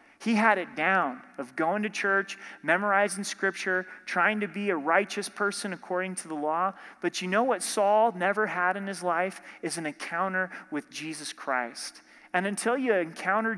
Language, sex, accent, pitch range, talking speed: English, male, American, 175-220 Hz, 175 wpm